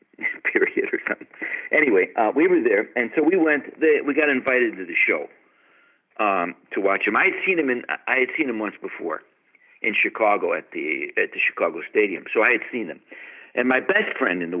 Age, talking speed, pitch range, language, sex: 60-79, 215 wpm, 315-420 Hz, English, male